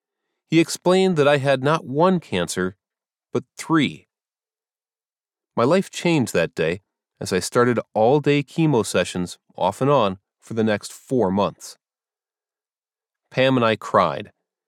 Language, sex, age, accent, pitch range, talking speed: English, male, 30-49, American, 115-155 Hz, 135 wpm